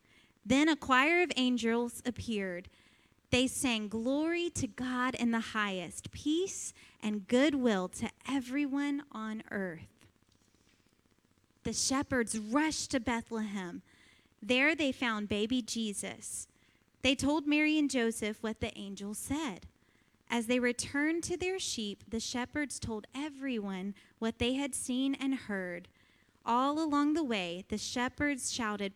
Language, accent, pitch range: English, American, 210-275 Hz